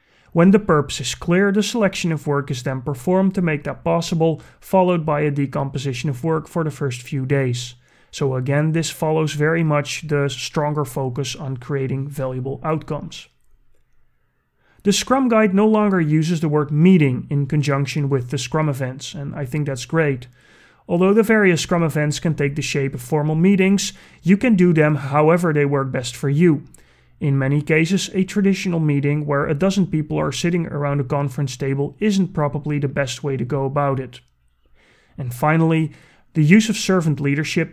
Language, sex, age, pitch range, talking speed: English, male, 30-49, 140-170 Hz, 180 wpm